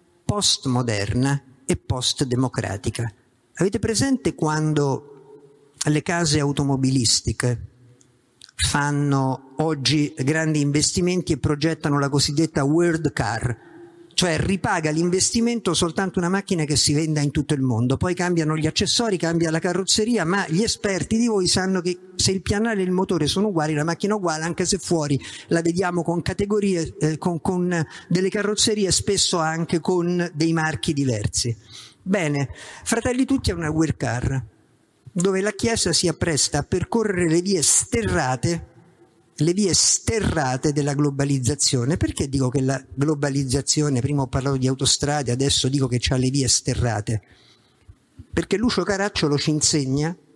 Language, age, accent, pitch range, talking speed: Italian, 50-69, native, 135-175 Hz, 145 wpm